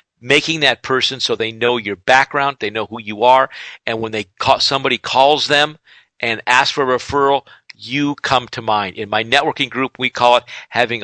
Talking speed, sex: 200 wpm, male